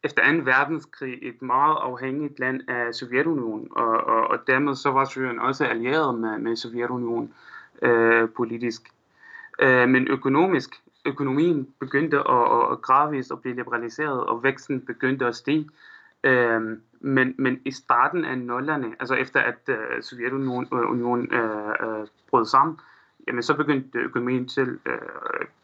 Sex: male